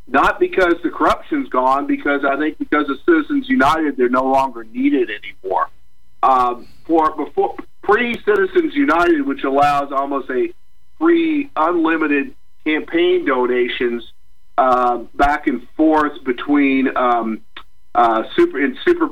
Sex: male